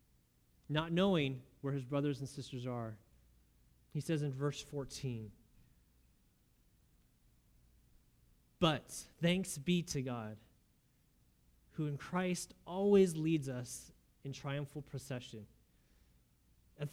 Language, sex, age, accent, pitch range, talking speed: English, male, 30-49, American, 125-165 Hz, 100 wpm